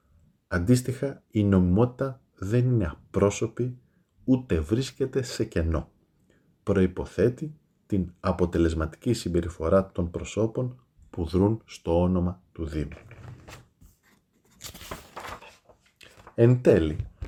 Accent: native